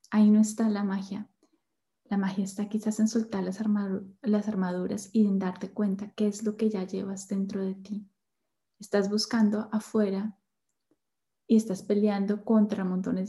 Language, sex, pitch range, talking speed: Spanish, female, 195-230 Hz, 165 wpm